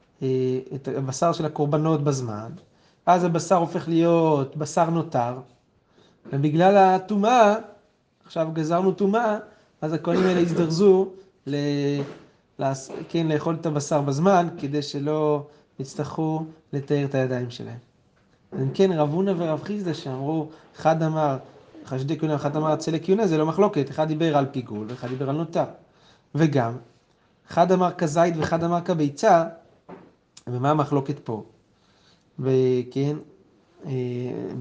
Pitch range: 140-170 Hz